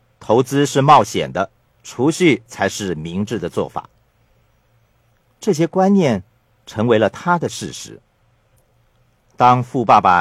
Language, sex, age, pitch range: Chinese, male, 50-69, 105-135 Hz